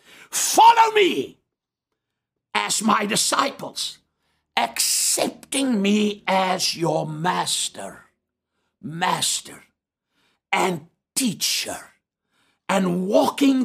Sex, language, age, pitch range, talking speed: male, English, 60-79, 175-235 Hz, 65 wpm